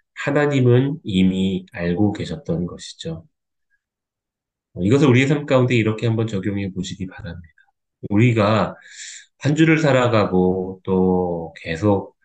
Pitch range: 90-115 Hz